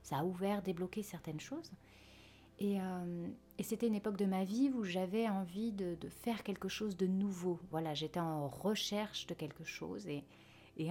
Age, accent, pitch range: 40-59, French, 155-205 Hz